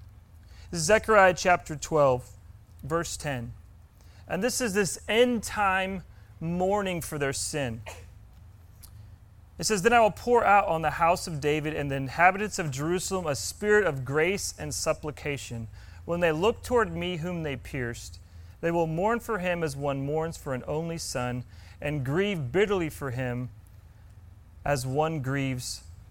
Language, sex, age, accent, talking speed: English, male, 40-59, American, 155 wpm